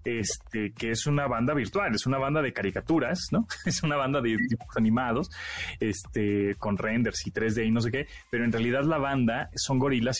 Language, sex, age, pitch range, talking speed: Spanish, male, 30-49, 115-155 Hz, 200 wpm